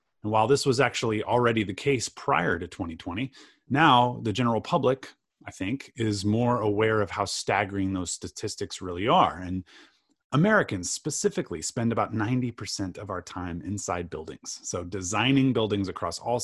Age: 30-49